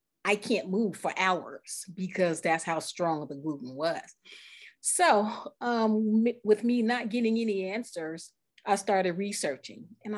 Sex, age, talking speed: female, 40-59, 140 wpm